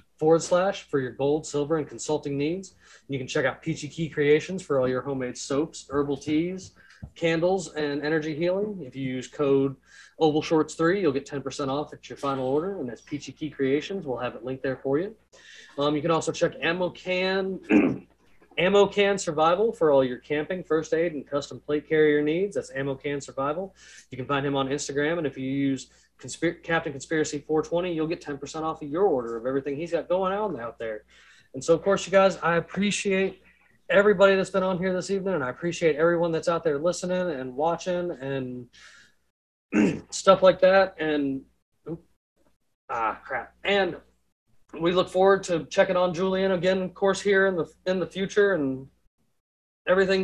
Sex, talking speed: male, 190 wpm